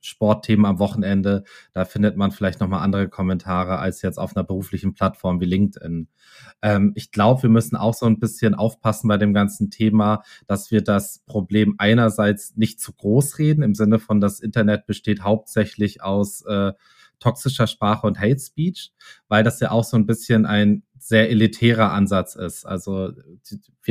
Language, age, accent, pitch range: German, 20-39, German, 100-110 Hz